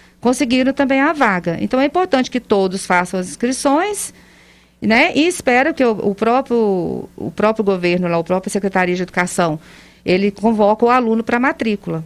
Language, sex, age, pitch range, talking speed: Portuguese, female, 40-59, 200-255 Hz, 165 wpm